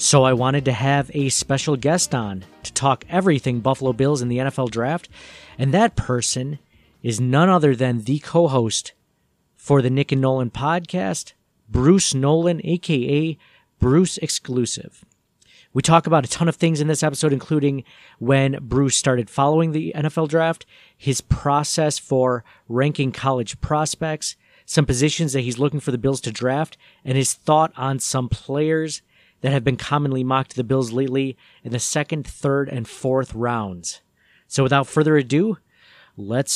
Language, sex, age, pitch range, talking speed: English, male, 40-59, 130-155 Hz, 160 wpm